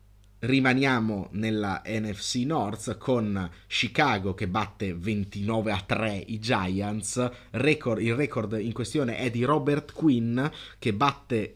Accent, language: native, Italian